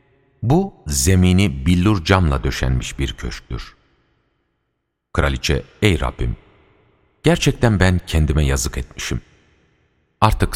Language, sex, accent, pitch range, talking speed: Turkish, male, native, 70-105 Hz, 90 wpm